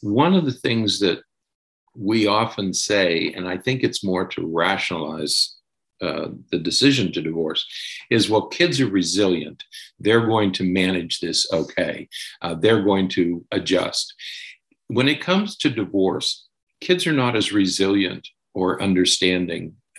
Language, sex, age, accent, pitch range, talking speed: English, male, 50-69, American, 90-120 Hz, 145 wpm